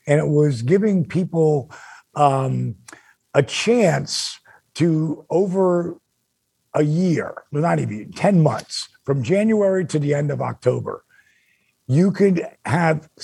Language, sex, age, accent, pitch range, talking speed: English, male, 50-69, American, 145-185 Hz, 120 wpm